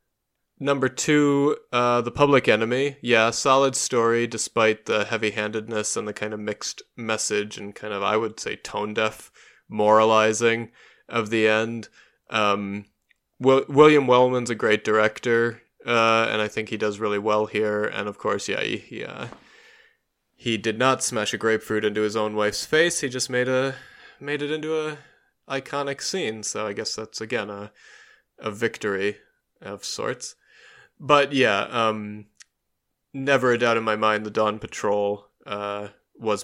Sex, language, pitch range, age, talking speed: male, English, 105-120 Hz, 20-39, 160 wpm